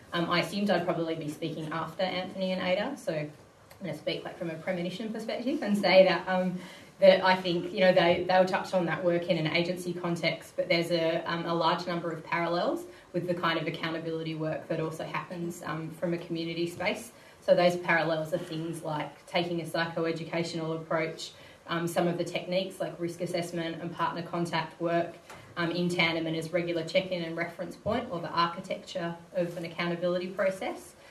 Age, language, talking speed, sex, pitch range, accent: 20-39, English, 195 wpm, female, 165-185 Hz, Australian